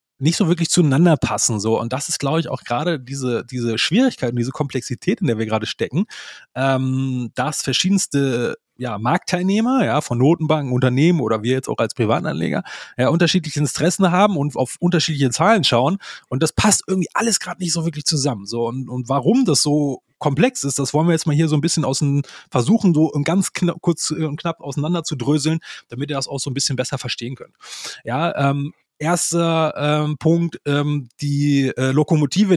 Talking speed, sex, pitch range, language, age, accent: 195 wpm, male, 135-165 Hz, German, 30-49, German